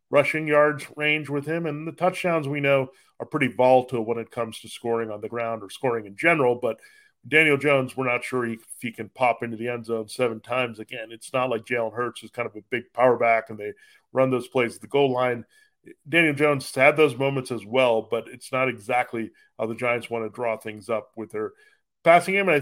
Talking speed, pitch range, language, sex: 240 wpm, 115-145 Hz, English, male